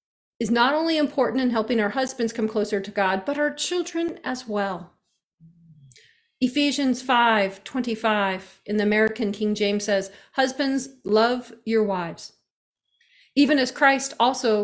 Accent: American